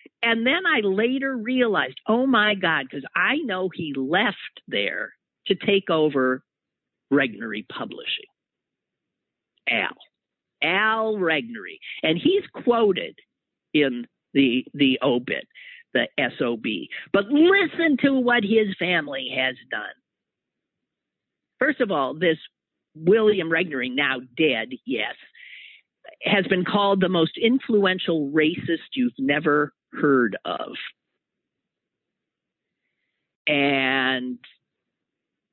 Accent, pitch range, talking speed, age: American, 150-230 Hz, 100 wpm, 50-69